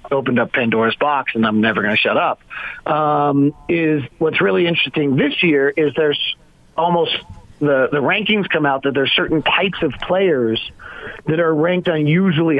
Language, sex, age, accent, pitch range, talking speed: English, male, 40-59, American, 145-180 Hz, 170 wpm